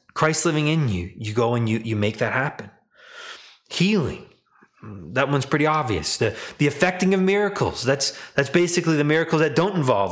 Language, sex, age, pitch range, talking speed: English, male, 20-39, 120-165 Hz, 180 wpm